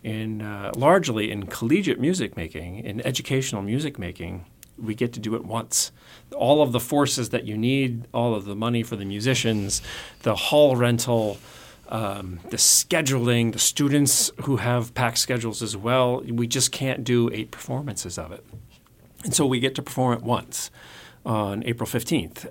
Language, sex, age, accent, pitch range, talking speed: English, male, 40-59, American, 110-125 Hz, 170 wpm